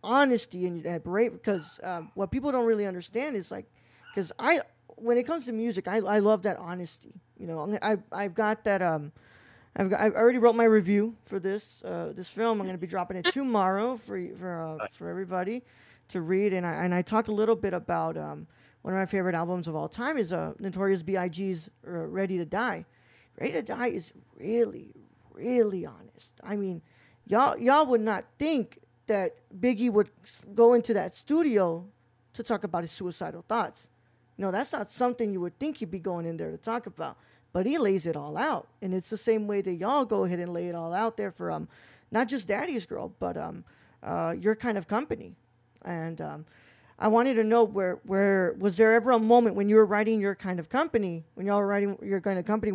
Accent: American